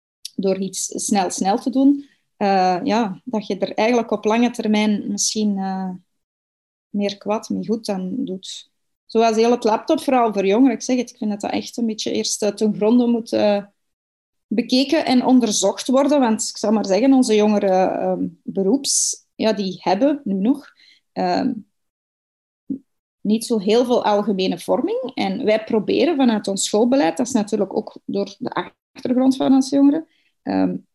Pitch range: 195-255 Hz